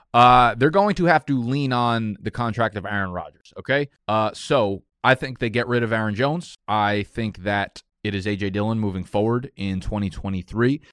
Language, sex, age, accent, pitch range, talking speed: English, male, 20-39, American, 105-125 Hz, 190 wpm